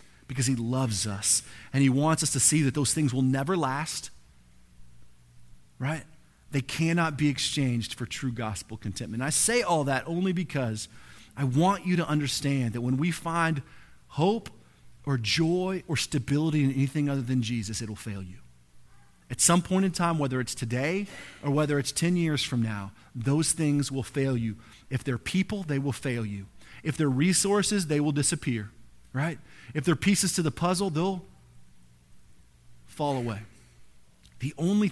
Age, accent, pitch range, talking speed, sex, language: 30-49, American, 110-155 Hz, 170 wpm, male, English